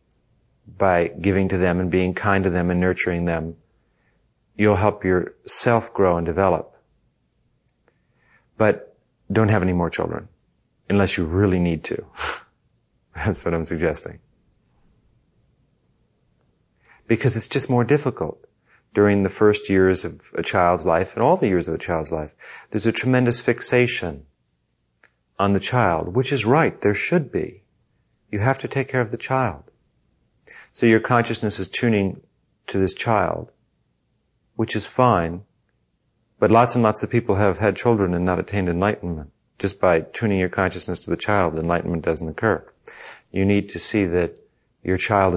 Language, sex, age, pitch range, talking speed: English, male, 40-59, 85-110 Hz, 155 wpm